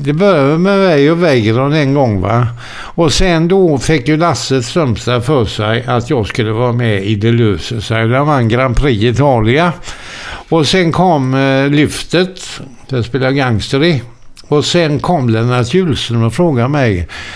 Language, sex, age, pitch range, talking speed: Swedish, male, 60-79, 115-155 Hz, 160 wpm